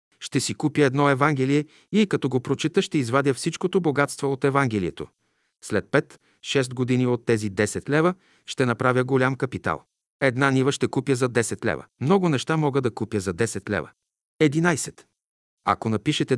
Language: Bulgarian